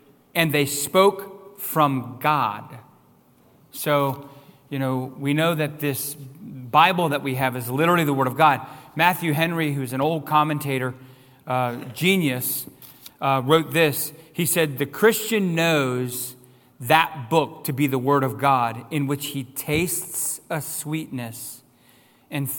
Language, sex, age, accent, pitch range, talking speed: English, male, 40-59, American, 130-165 Hz, 140 wpm